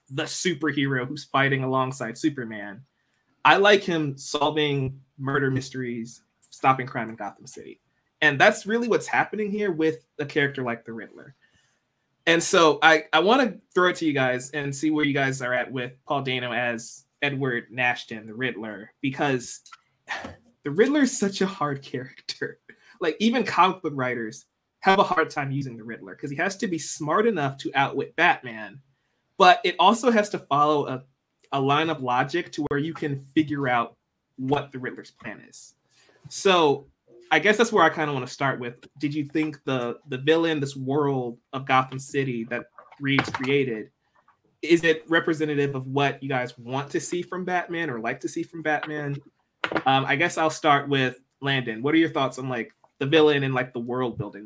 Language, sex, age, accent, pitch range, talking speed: English, male, 20-39, American, 130-160 Hz, 185 wpm